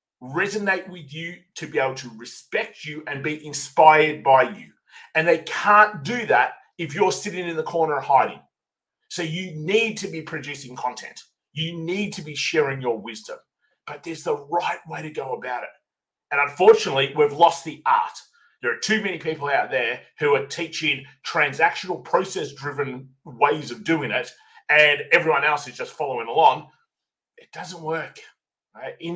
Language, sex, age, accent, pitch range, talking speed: English, male, 30-49, Australian, 150-235 Hz, 170 wpm